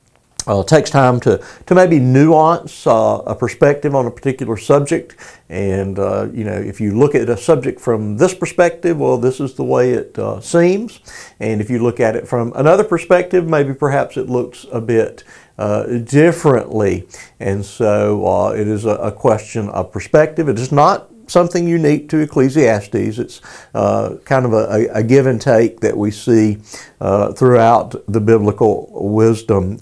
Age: 50-69